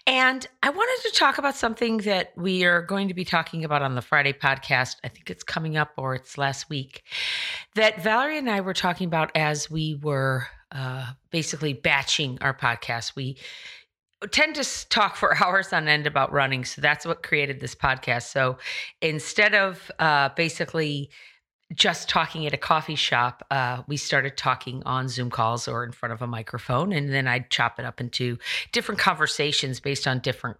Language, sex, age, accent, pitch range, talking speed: English, female, 40-59, American, 130-185 Hz, 185 wpm